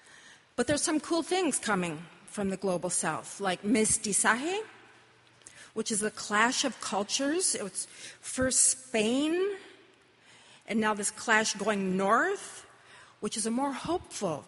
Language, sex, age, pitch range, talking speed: English, female, 40-59, 195-245 Hz, 135 wpm